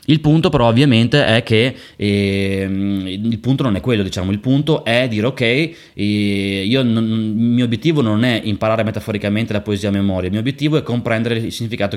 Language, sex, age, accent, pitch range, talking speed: Italian, male, 20-39, native, 100-125 Hz, 185 wpm